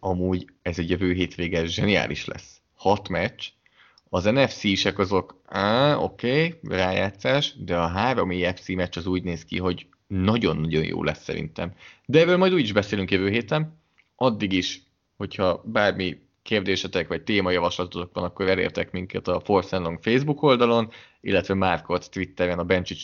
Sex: male